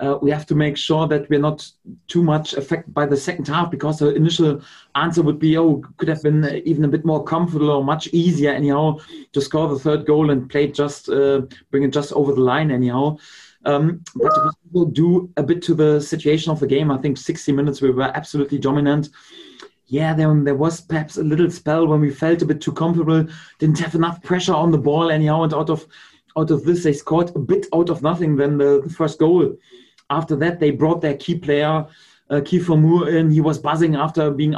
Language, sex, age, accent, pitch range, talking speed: English, male, 30-49, German, 145-165 Hz, 225 wpm